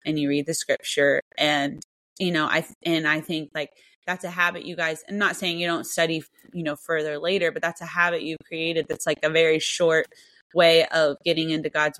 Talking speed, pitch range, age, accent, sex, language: 220 wpm, 155-175 Hz, 20-39, American, female, English